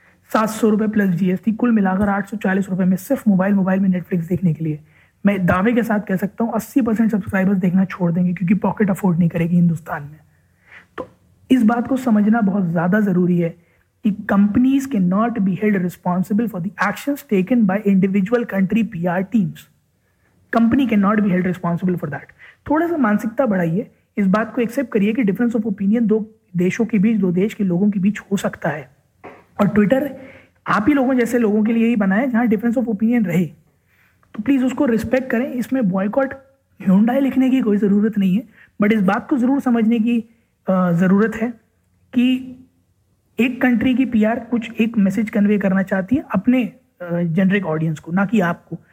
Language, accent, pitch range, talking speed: Hindi, native, 190-235 Hz, 190 wpm